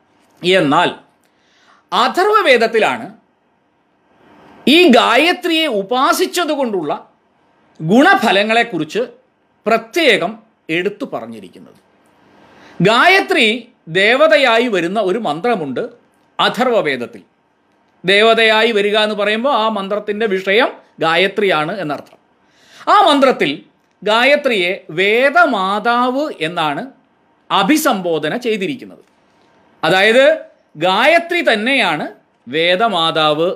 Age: 40-59